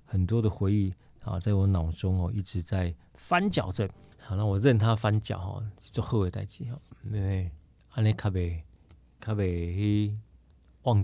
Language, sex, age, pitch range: Chinese, male, 40-59, 90-115 Hz